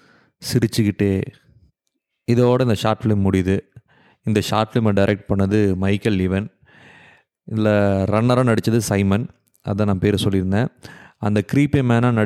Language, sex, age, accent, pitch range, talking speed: English, male, 30-49, Indian, 100-125 Hz, 165 wpm